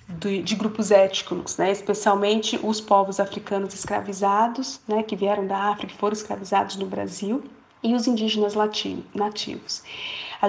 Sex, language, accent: female, Portuguese, Brazilian